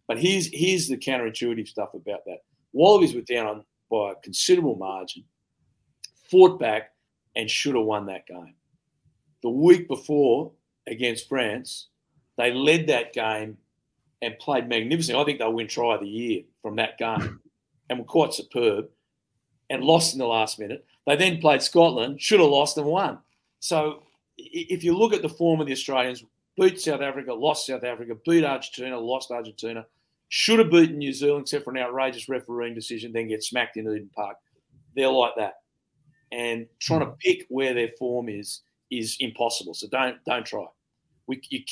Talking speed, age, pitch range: 175 wpm, 50-69, 115-160 Hz